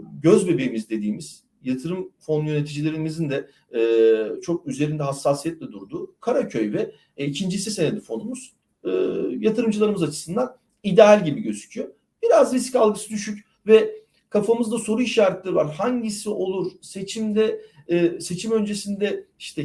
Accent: native